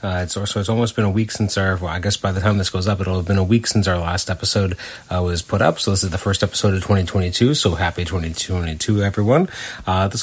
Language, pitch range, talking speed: English, 95-110 Hz, 265 wpm